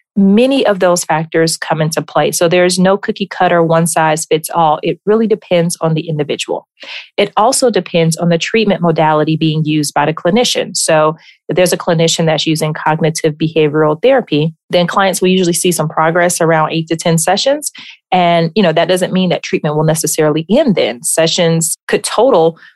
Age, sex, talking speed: 30-49, female, 180 wpm